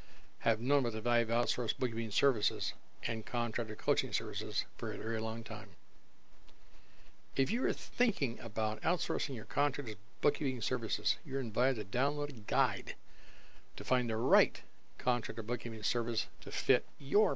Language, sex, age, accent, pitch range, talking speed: English, male, 60-79, American, 110-135 Hz, 150 wpm